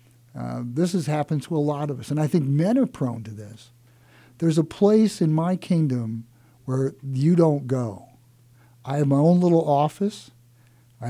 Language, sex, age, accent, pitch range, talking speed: English, male, 50-69, American, 120-160 Hz, 185 wpm